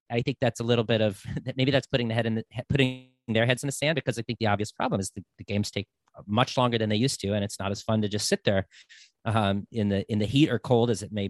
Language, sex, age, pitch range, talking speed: English, male, 40-59, 105-125 Hz, 295 wpm